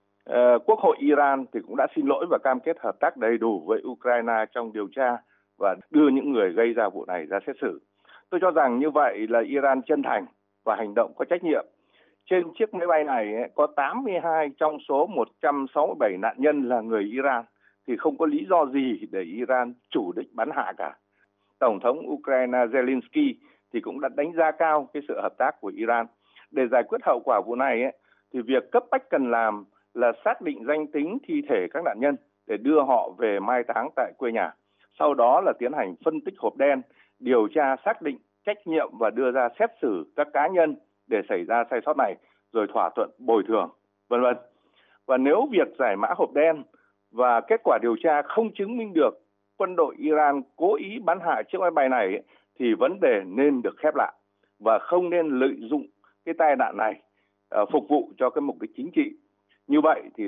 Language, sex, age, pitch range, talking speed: Vietnamese, male, 60-79, 120-170 Hz, 210 wpm